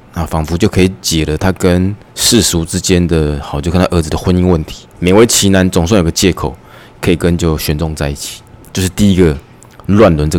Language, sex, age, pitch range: Chinese, male, 20-39, 80-105 Hz